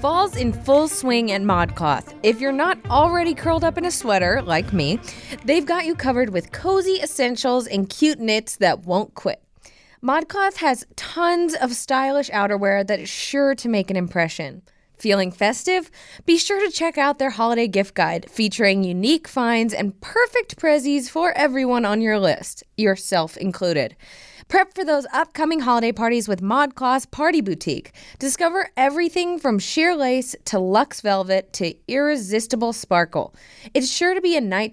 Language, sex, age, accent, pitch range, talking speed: English, female, 20-39, American, 205-305 Hz, 165 wpm